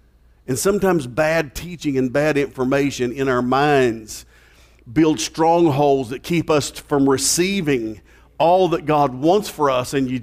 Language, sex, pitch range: English, male, 120-175 Hz